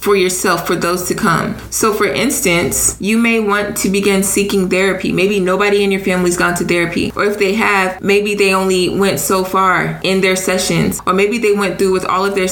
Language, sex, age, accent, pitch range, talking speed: English, female, 20-39, American, 175-205 Hz, 220 wpm